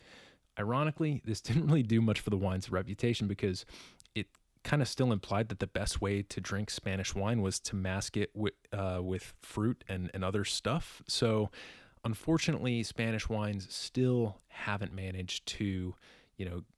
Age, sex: 30-49, male